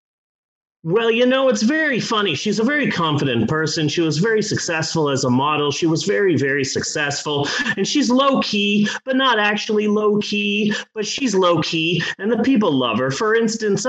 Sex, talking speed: male, 175 wpm